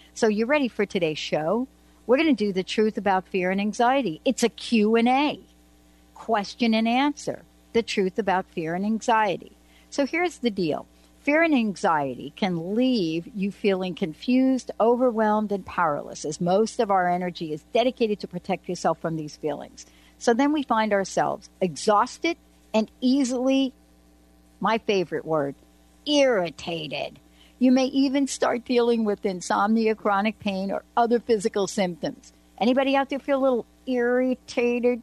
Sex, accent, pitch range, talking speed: female, American, 175-240 Hz, 150 wpm